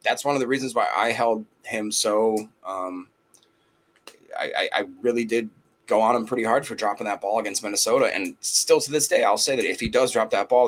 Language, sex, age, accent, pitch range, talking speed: English, male, 30-49, American, 105-130 Hz, 230 wpm